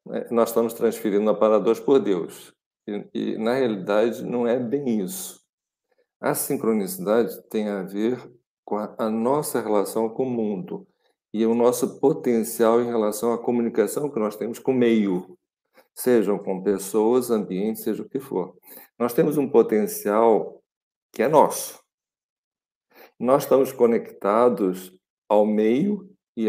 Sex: male